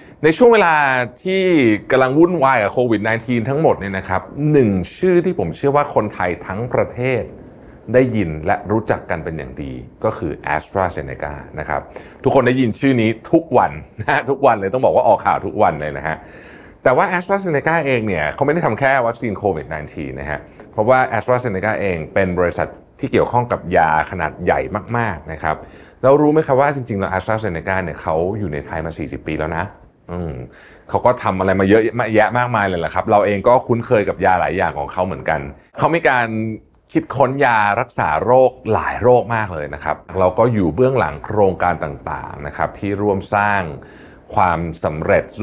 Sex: male